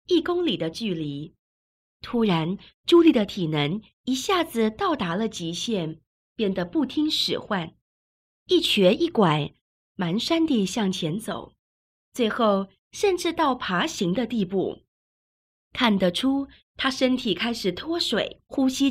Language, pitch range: Chinese, 185-265 Hz